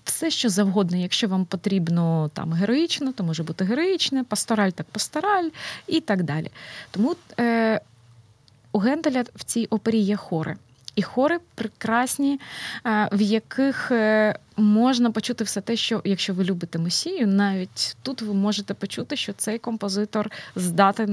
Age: 20-39